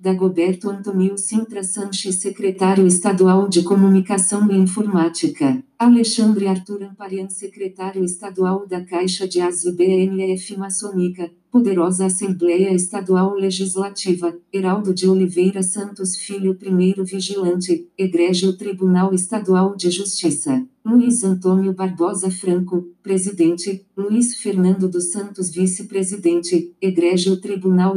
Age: 40-59